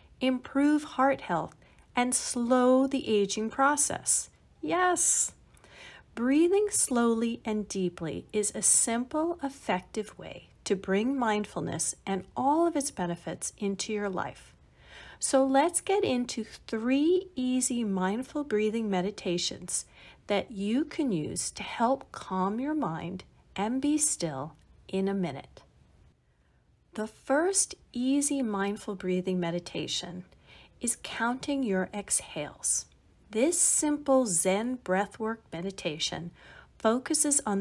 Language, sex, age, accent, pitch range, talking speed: English, female, 40-59, American, 190-275 Hz, 110 wpm